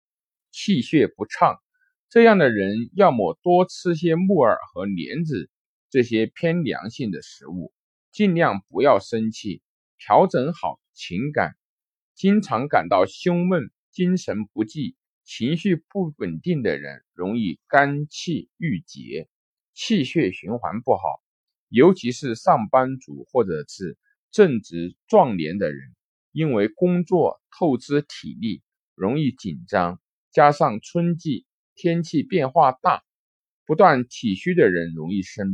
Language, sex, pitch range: Chinese, male, 115-180 Hz